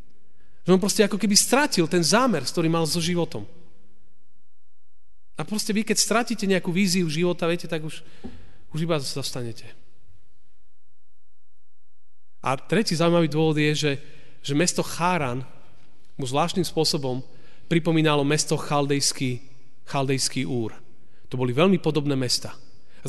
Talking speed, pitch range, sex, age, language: 125 wpm, 125-170 Hz, male, 30-49, Slovak